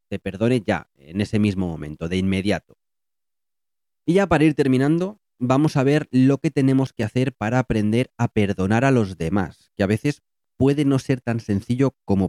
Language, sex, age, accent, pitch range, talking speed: Spanish, male, 30-49, Spanish, 100-135 Hz, 185 wpm